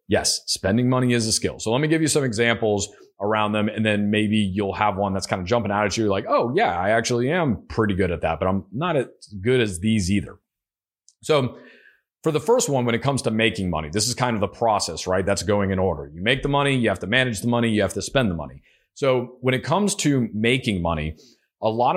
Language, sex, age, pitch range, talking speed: English, male, 30-49, 100-125 Hz, 255 wpm